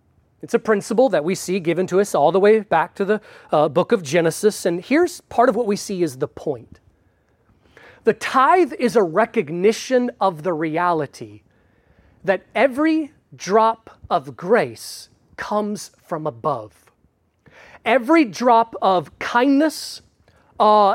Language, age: English, 30-49